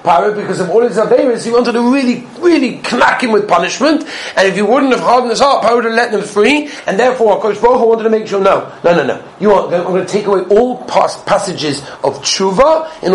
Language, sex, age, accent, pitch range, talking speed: English, male, 40-59, British, 175-230 Hz, 235 wpm